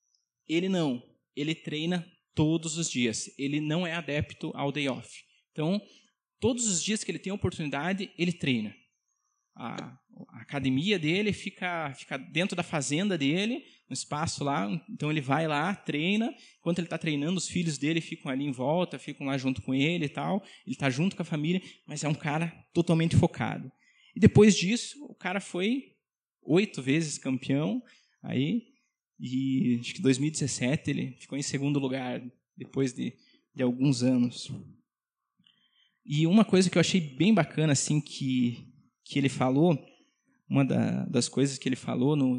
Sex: male